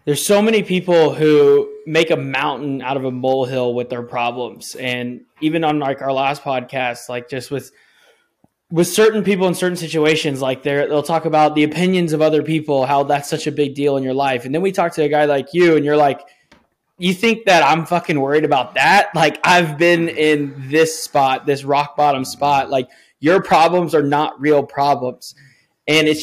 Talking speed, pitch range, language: 205 wpm, 140-180 Hz, English